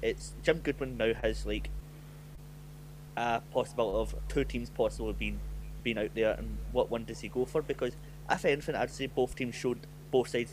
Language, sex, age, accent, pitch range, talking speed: English, male, 20-39, British, 115-150 Hz, 190 wpm